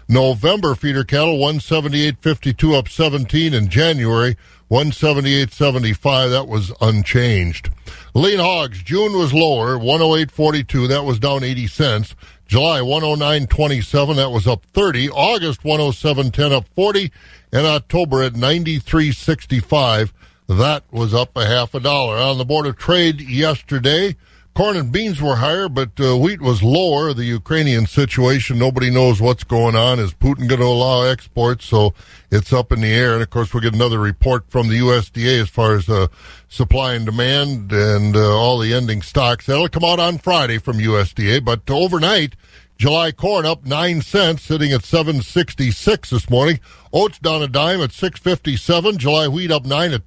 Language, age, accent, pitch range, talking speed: English, 50-69, American, 120-155 Hz, 160 wpm